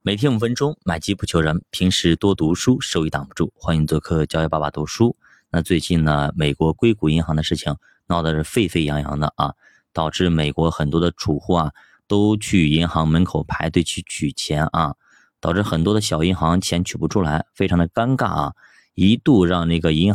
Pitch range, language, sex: 80-100 Hz, Chinese, male